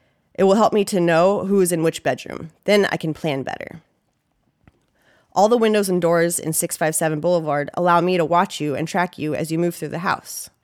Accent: American